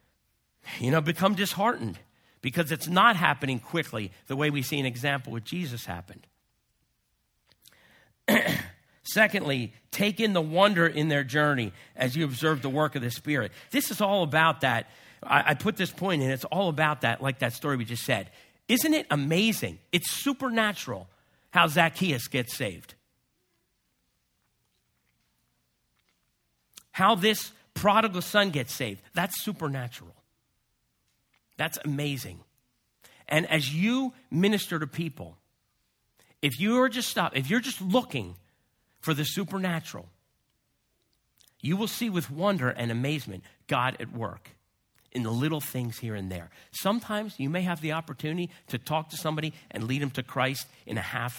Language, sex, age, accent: English, male, 50-69, American